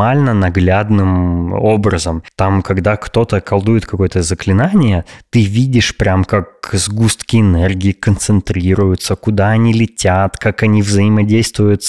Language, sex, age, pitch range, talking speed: Russian, male, 20-39, 95-115 Hz, 115 wpm